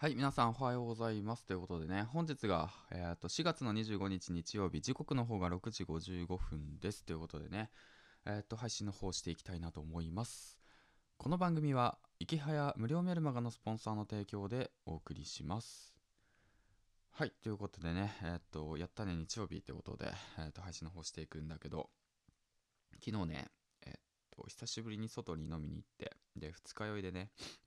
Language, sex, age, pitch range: Japanese, male, 20-39, 85-110 Hz